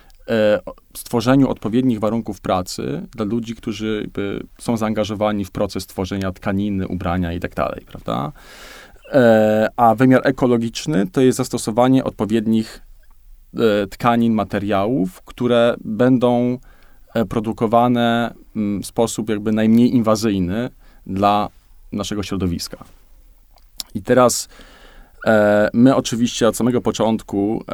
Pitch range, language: 100-120 Hz, Polish